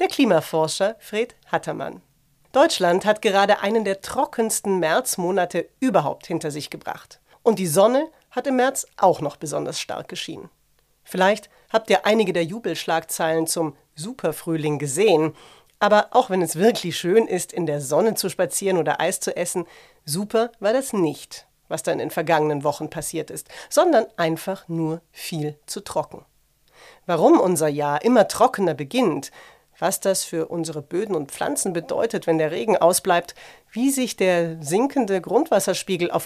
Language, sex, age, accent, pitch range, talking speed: German, female, 40-59, German, 165-220 Hz, 155 wpm